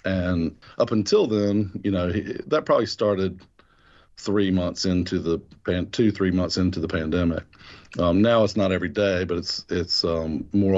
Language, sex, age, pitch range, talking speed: English, male, 40-59, 85-100 Hz, 175 wpm